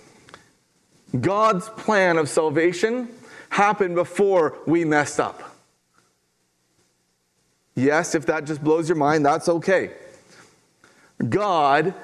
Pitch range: 155-200 Hz